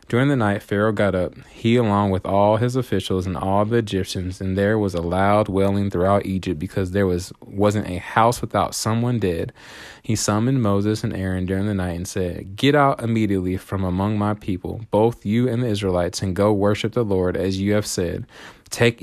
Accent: American